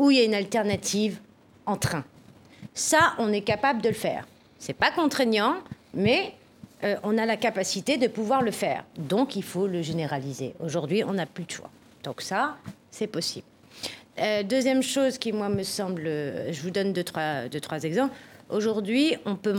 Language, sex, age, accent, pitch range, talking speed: French, female, 40-59, French, 175-245 Hz, 190 wpm